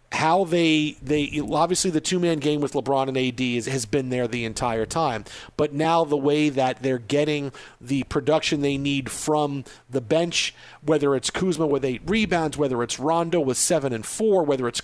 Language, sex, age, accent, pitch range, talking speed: English, male, 50-69, American, 140-190 Hz, 195 wpm